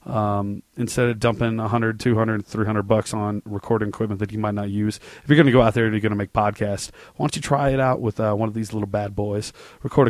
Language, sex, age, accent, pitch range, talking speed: English, male, 30-49, American, 105-135 Hz, 260 wpm